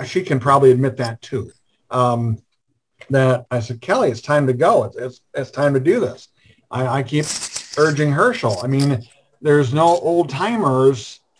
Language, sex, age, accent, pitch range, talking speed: English, male, 50-69, American, 120-140 Hz, 175 wpm